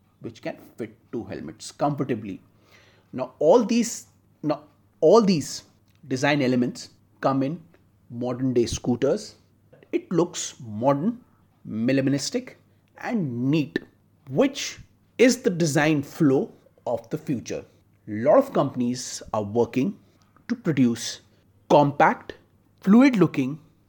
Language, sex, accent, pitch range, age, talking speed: Hindi, male, native, 110-170 Hz, 30-49, 110 wpm